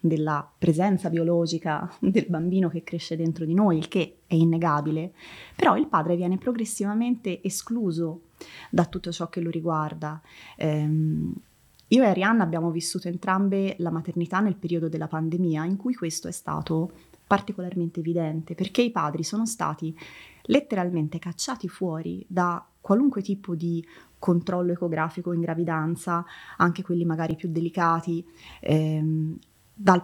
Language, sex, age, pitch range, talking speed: Italian, female, 20-39, 165-190 Hz, 135 wpm